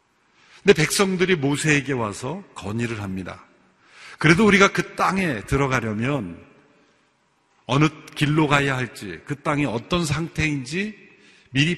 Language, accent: Korean, native